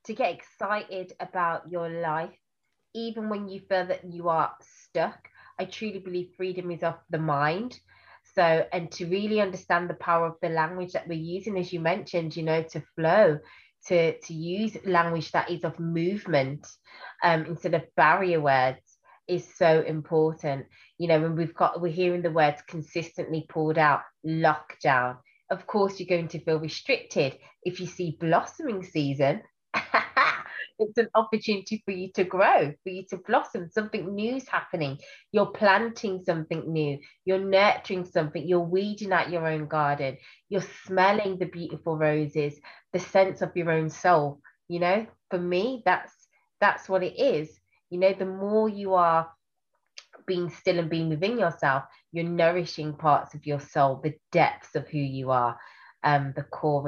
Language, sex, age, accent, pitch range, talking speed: English, female, 20-39, British, 155-185 Hz, 165 wpm